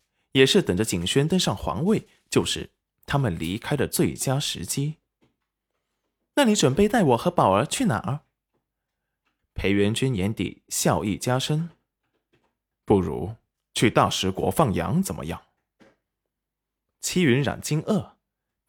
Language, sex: Chinese, male